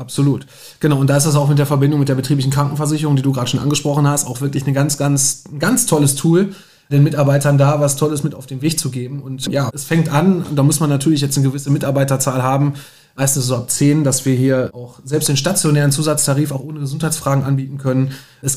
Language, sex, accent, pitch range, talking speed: German, male, German, 135-155 Hz, 240 wpm